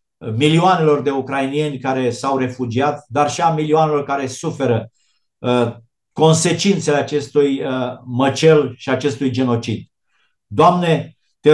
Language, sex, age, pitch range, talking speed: Romanian, male, 50-69, 140-165 Hz, 105 wpm